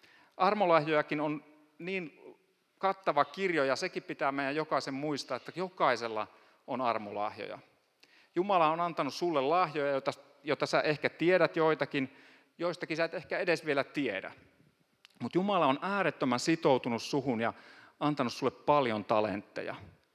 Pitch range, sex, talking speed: 130-170 Hz, male, 130 wpm